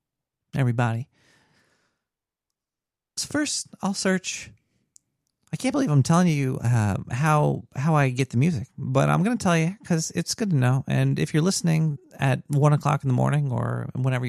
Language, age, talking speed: English, 40-59, 165 wpm